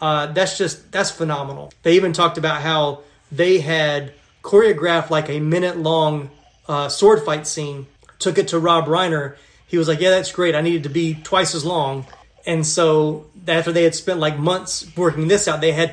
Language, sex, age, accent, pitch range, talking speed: English, male, 30-49, American, 150-170 Hz, 195 wpm